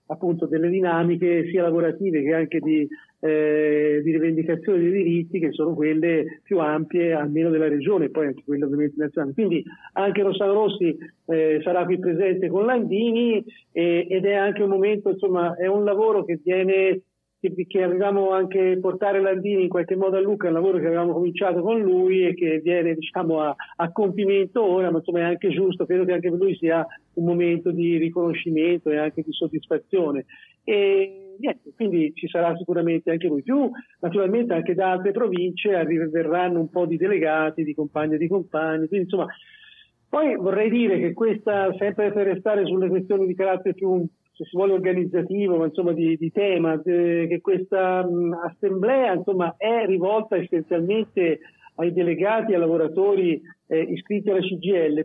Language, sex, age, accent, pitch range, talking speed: Italian, male, 50-69, native, 165-195 Hz, 175 wpm